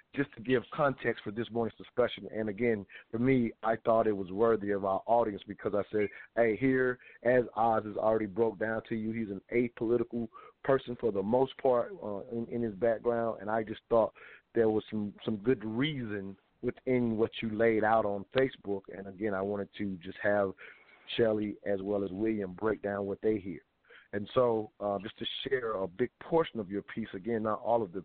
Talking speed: 210 wpm